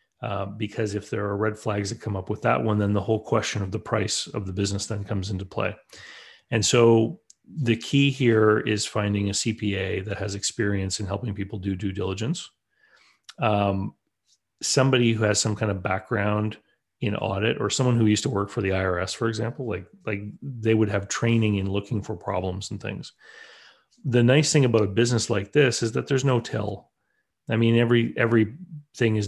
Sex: male